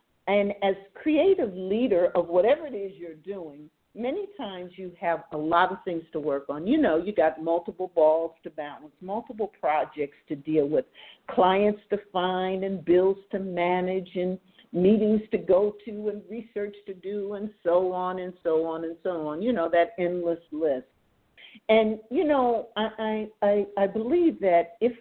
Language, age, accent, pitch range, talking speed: English, 50-69, American, 170-230 Hz, 175 wpm